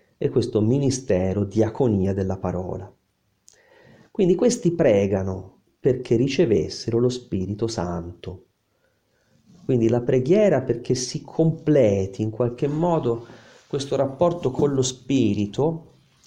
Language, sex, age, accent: Italian, male, 40-59, native